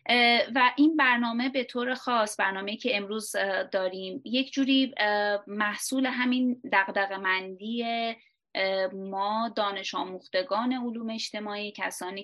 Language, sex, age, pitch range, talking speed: Persian, female, 20-39, 195-230 Hz, 100 wpm